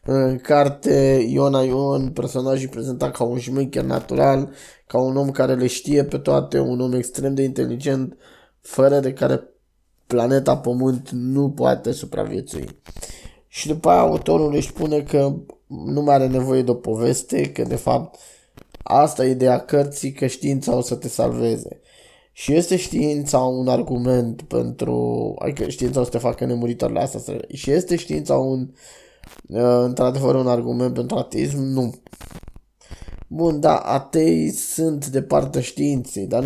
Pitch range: 125-140 Hz